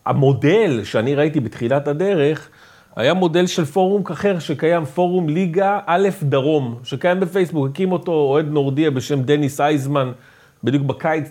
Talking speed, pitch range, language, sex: 140 wpm, 130-190 Hz, English, male